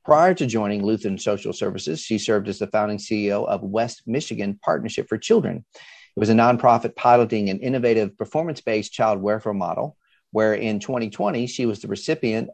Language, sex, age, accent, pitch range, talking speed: English, male, 40-59, American, 105-125 Hz, 170 wpm